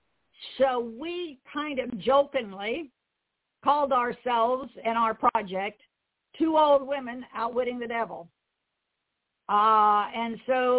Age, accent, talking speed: 50-69, American, 105 wpm